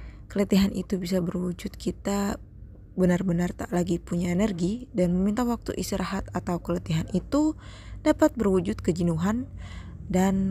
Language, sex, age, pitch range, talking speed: Indonesian, female, 20-39, 165-200 Hz, 120 wpm